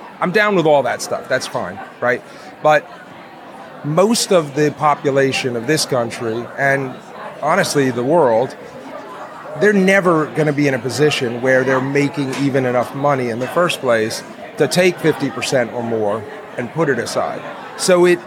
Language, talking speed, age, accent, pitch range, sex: English, 165 wpm, 40-59, American, 130-165 Hz, male